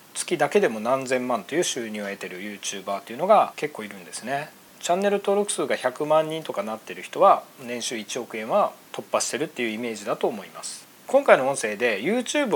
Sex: male